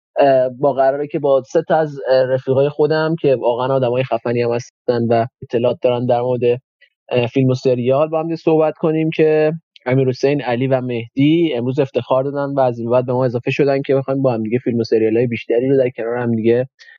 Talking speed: 200 wpm